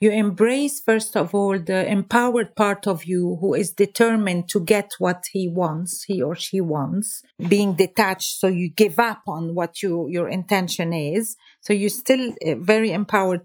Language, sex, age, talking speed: English, female, 40-59, 170 wpm